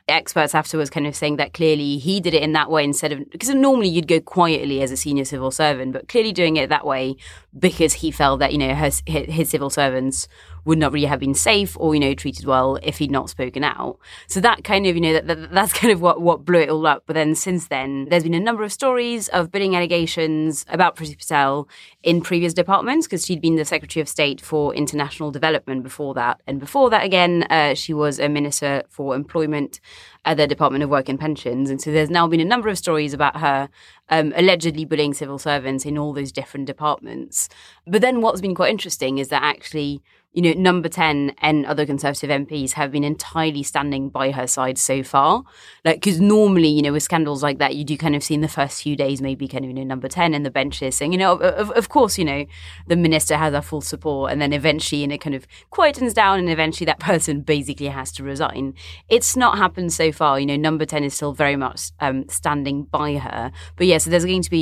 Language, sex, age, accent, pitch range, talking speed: English, female, 20-39, British, 140-170 Hz, 235 wpm